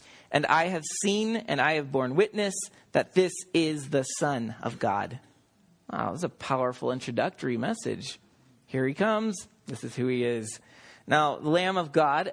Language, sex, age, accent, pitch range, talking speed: English, male, 30-49, American, 130-215 Hz, 170 wpm